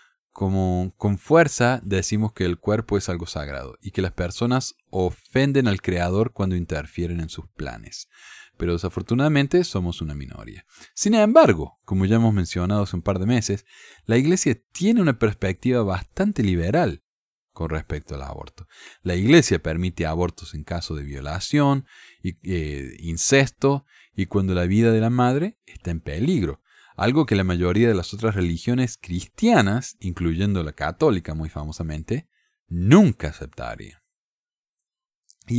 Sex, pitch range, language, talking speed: male, 85-120 Hz, Spanish, 145 wpm